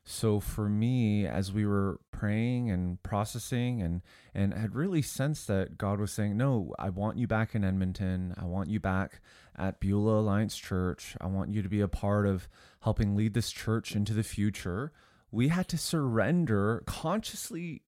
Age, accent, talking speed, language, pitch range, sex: 30-49, American, 180 wpm, English, 100-120 Hz, male